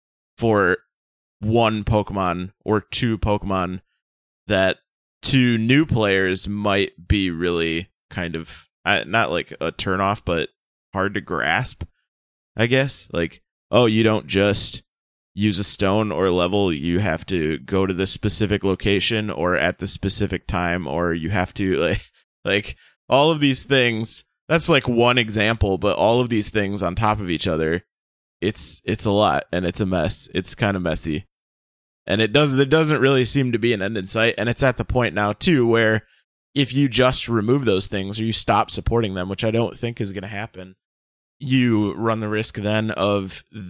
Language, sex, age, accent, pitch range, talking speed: English, male, 20-39, American, 95-115 Hz, 180 wpm